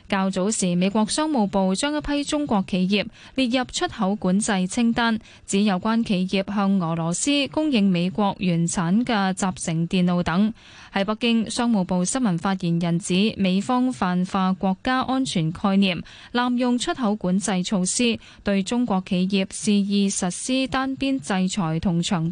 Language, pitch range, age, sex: Chinese, 185-235 Hz, 10-29, female